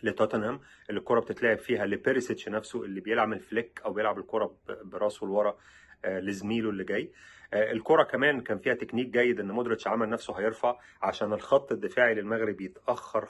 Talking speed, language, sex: 150 wpm, Arabic, male